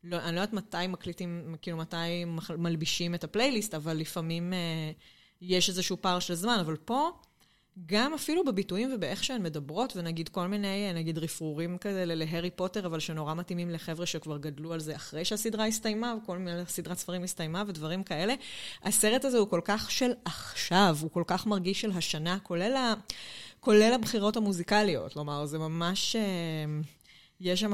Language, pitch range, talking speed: Hebrew, 165-205 Hz, 165 wpm